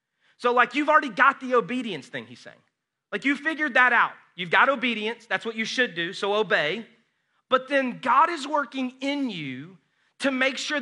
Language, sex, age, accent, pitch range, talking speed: English, male, 30-49, American, 180-250 Hz, 195 wpm